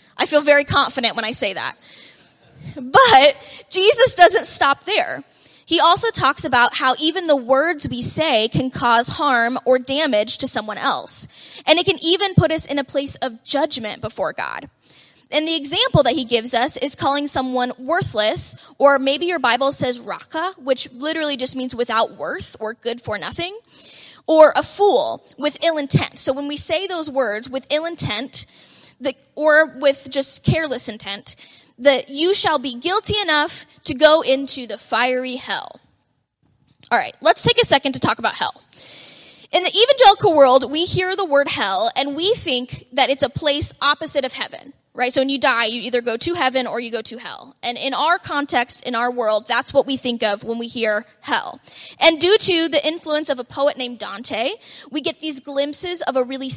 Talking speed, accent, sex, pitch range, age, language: 190 wpm, American, female, 250-315 Hz, 20-39, English